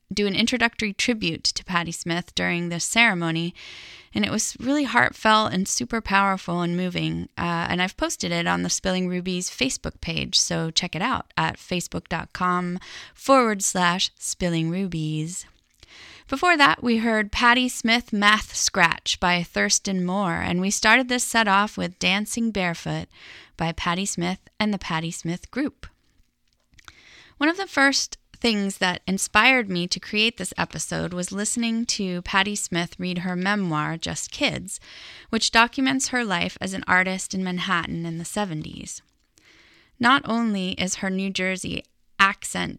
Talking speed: 155 wpm